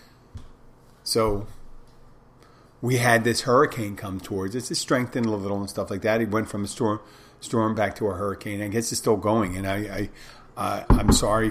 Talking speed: 195 wpm